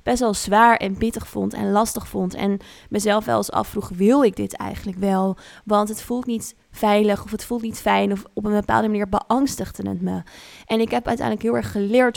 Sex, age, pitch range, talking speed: female, 20-39, 195-220 Hz, 215 wpm